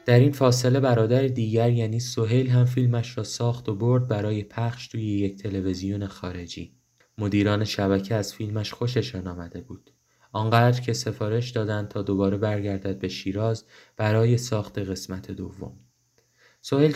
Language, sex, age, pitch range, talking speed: Persian, male, 20-39, 95-115 Hz, 140 wpm